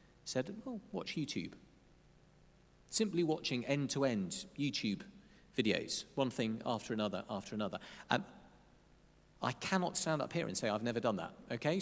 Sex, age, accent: male, 40-59, British